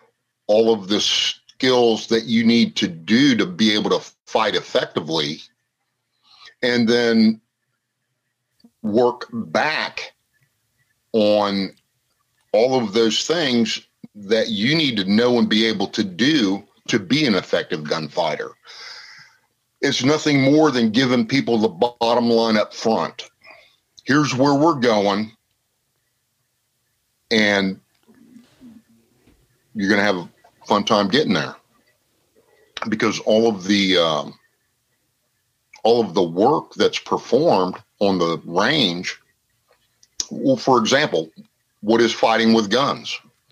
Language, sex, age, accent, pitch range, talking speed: English, male, 50-69, American, 105-125 Hz, 120 wpm